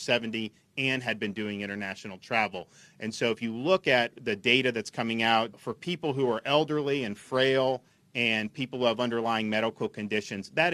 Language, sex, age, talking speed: English, male, 40-59, 185 wpm